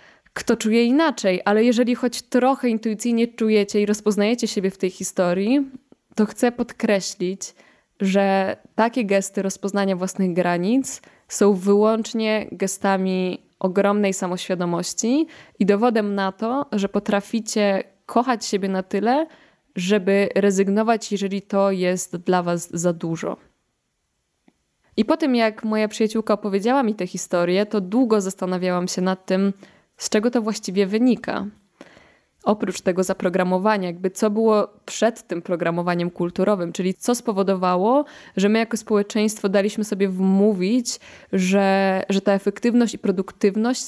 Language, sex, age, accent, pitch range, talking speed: Polish, female, 20-39, native, 190-225 Hz, 130 wpm